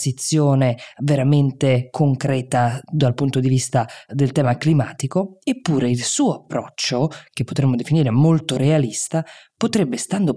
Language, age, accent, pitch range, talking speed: Italian, 20-39, native, 130-160 Hz, 115 wpm